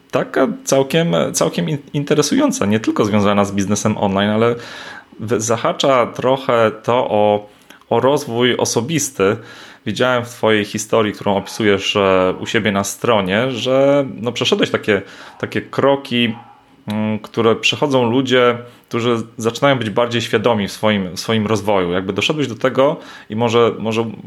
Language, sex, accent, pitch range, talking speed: Polish, male, native, 100-125 Hz, 130 wpm